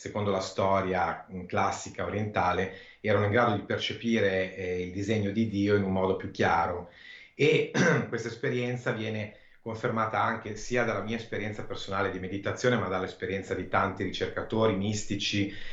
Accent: native